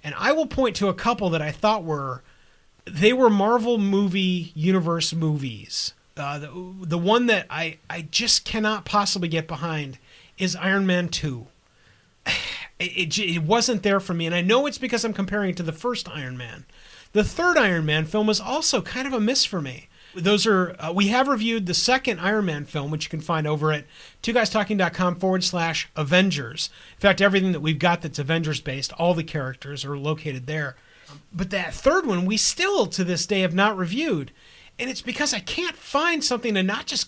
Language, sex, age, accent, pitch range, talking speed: English, male, 40-59, American, 160-230 Hz, 200 wpm